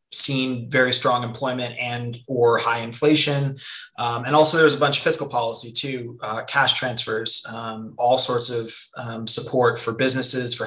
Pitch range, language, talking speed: 120-140 Hz, English, 175 wpm